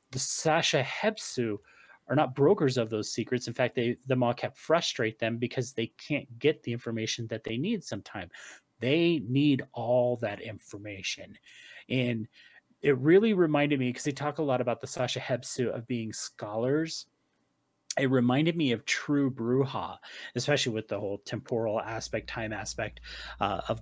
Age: 30-49